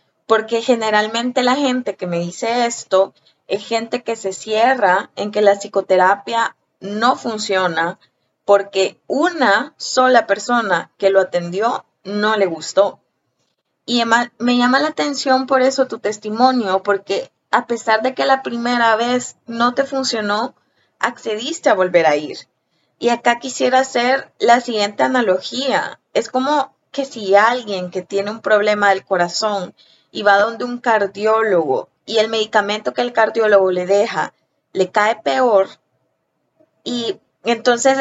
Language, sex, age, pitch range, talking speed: Spanish, female, 20-39, 195-250 Hz, 140 wpm